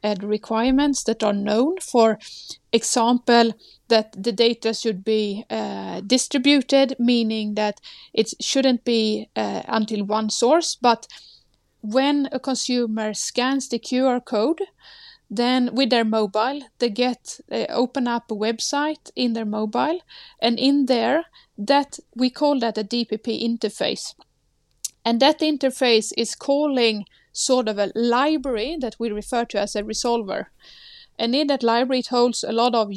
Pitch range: 215-265 Hz